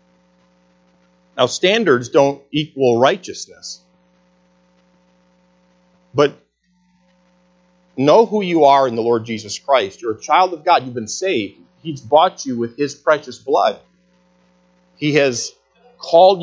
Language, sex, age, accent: English, male, 40-59, American